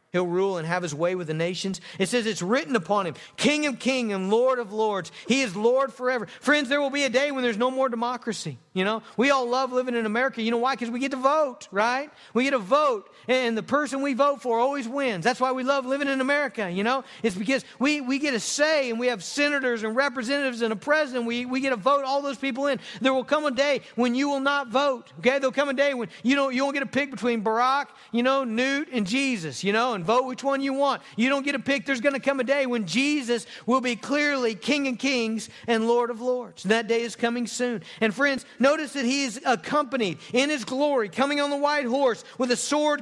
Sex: male